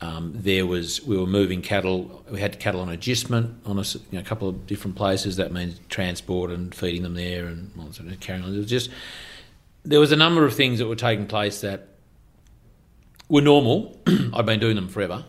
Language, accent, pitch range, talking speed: English, Australian, 90-110 Hz, 200 wpm